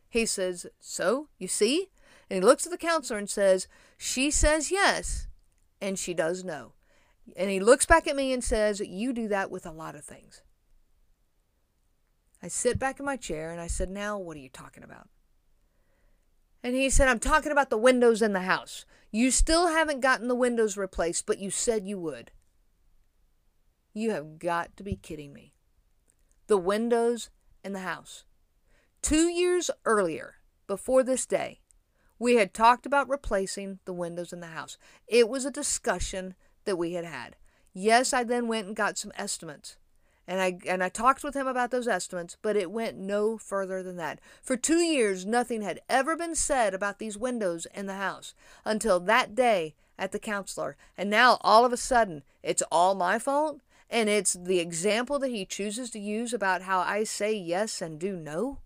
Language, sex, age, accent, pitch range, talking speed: English, female, 50-69, American, 185-250 Hz, 185 wpm